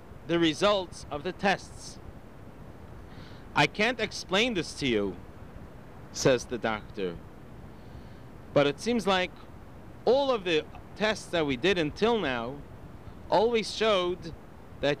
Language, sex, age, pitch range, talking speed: English, male, 40-59, 130-205 Hz, 120 wpm